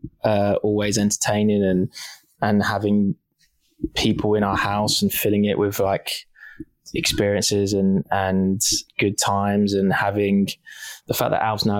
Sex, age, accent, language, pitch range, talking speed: male, 20-39, British, English, 100-110 Hz, 135 wpm